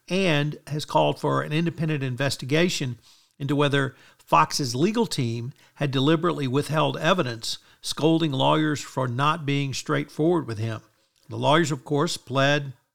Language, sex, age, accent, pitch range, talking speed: English, male, 60-79, American, 125-155 Hz, 135 wpm